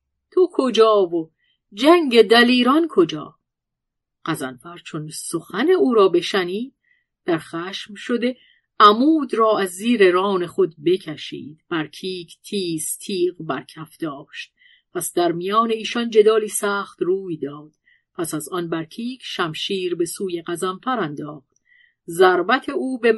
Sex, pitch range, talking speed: female, 175-250 Hz, 120 wpm